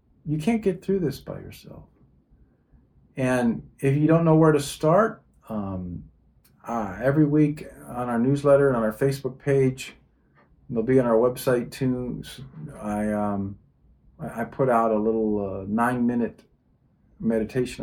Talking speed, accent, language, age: 145 wpm, American, English, 50-69